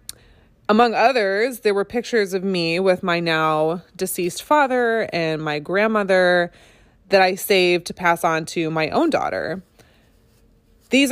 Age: 20-39